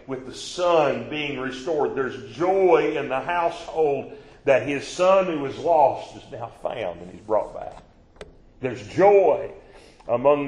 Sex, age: male, 40-59